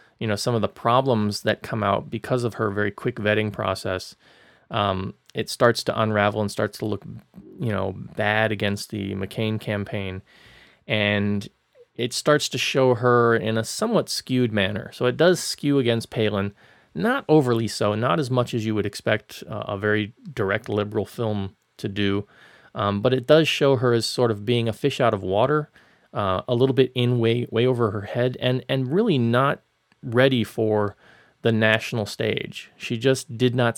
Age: 30-49